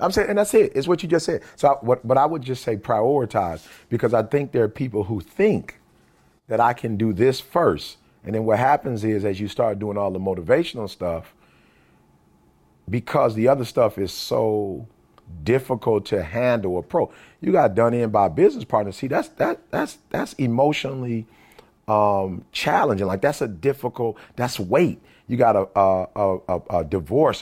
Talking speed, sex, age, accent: 190 wpm, male, 40-59, American